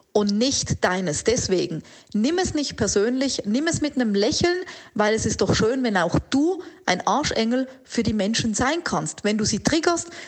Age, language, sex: 40-59, German, female